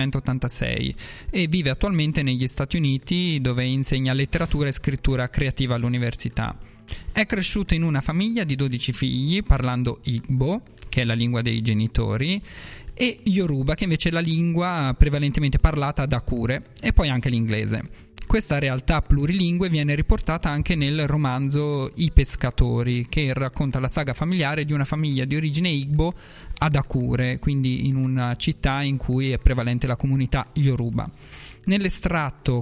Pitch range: 125-160 Hz